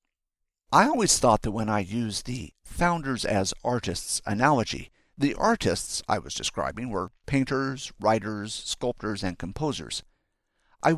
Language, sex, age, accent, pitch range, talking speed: English, male, 50-69, American, 100-145 Hz, 130 wpm